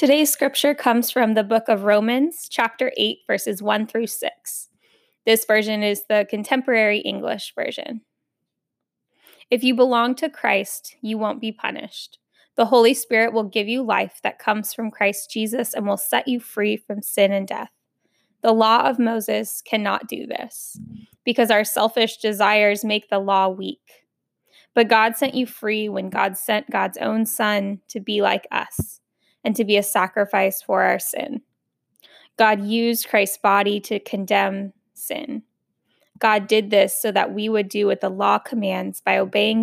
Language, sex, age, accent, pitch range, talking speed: English, female, 10-29, American, 205-235 Hz, 165 wpm